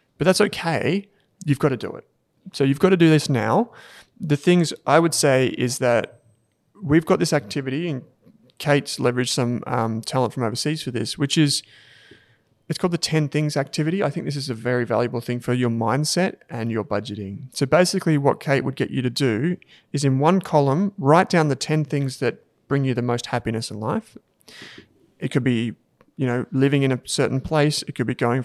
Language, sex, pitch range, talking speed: English, male, 125-150 Hz, 205 wpm